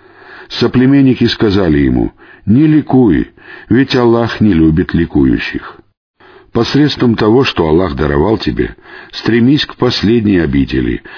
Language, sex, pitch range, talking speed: Russian, male, 85-125 Hz, 105 wpm